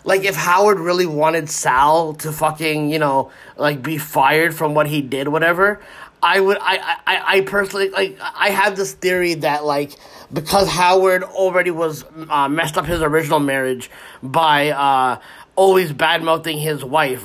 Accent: American